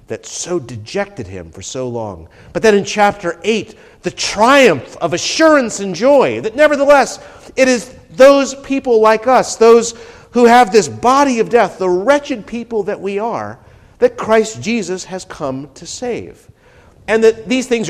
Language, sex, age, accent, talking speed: English, male, 50-69, American, 170 wpm